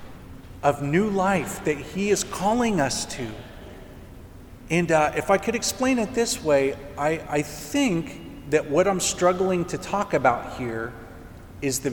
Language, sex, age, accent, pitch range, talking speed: English, male, 40-59, American, 120-190 Hz, 155 wpm